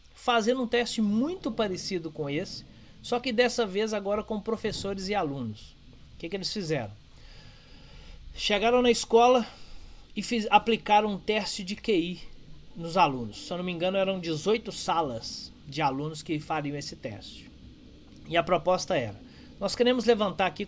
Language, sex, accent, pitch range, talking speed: Portuguese, male, Brazilian, 155-215 Hz, 155 wpm